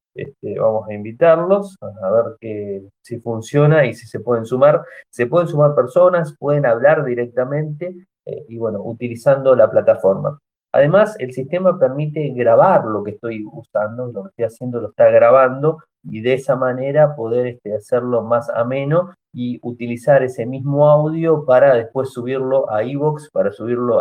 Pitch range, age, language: 115-150 Hz, 30-49, Spanish